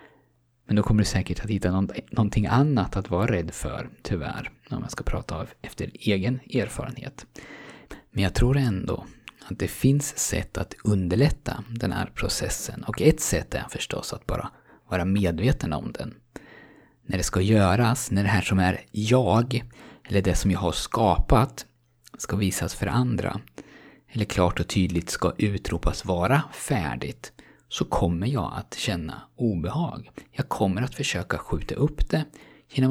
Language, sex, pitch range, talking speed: Swedish, male, 90-125 Hz, 160 wpm